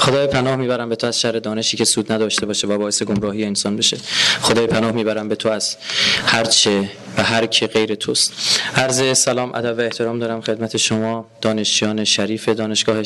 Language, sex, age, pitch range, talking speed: Persian, male, 20-39, 115-145 Hz, 180 wpm